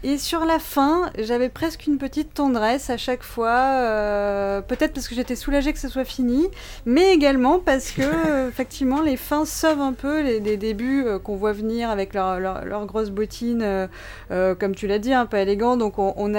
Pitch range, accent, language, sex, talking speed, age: 195-245 Hz, French, French, female, 210 wpm, 20-39